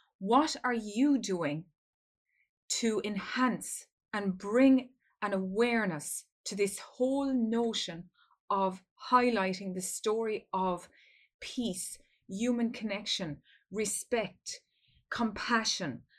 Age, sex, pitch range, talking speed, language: 30-49, female, 190-235 Hz, 90 wpm, English